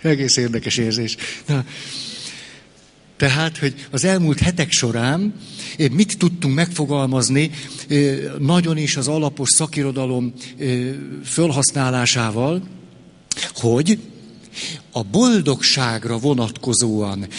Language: Hungarian